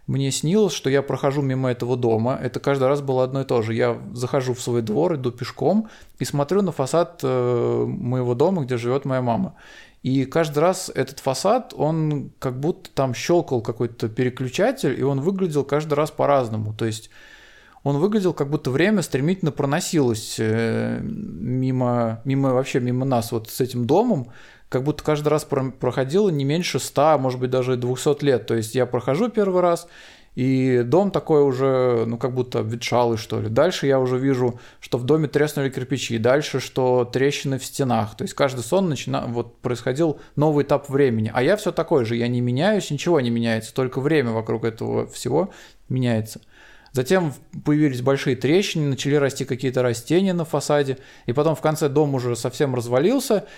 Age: 20-39